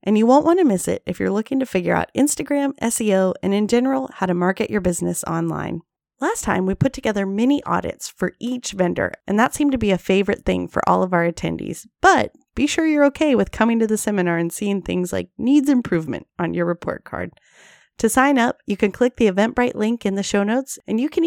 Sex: female